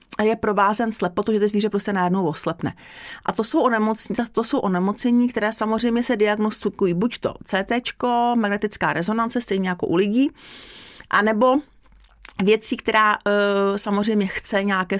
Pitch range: 180-215 Hz